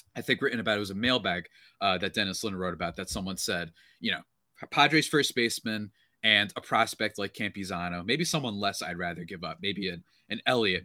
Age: 20-39